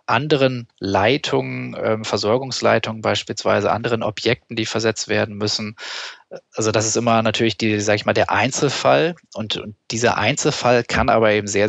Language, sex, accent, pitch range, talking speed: German, male, German, 105-120 Hz, 155 wpm